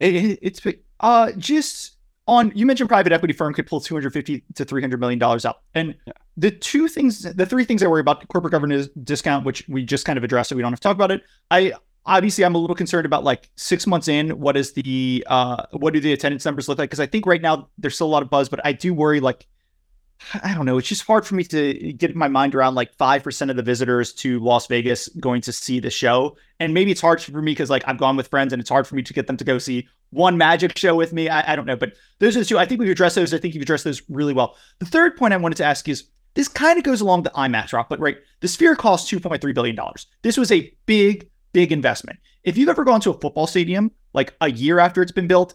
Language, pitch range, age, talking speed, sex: English, 135-185 Hz, 30-49, 265 wpm, male